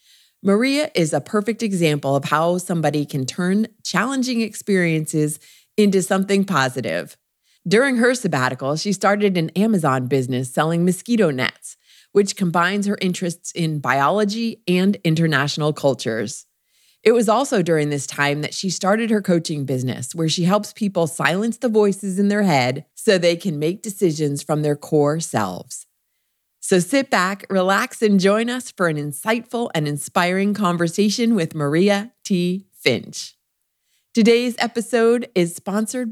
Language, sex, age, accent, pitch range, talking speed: English, female, 30-49, American, 155-210 Hz, 145 wpm